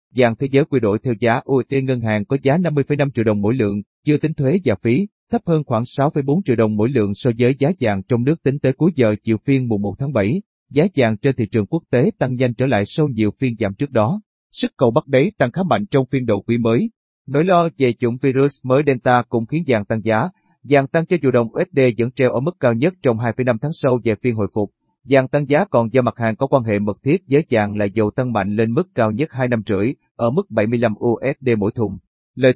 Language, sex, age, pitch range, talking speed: Vietnamese, male, 30-49, 115-145 Hz, 255 wpm